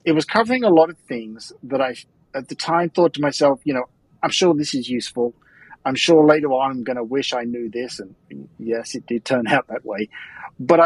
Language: English